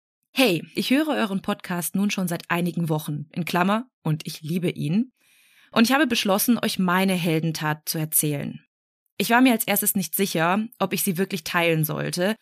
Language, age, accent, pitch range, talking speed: German, 20-39, German, 175-220 Hz, 185 wpm